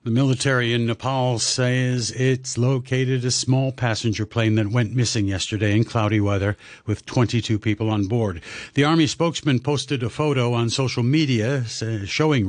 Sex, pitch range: male, 105-140 Hz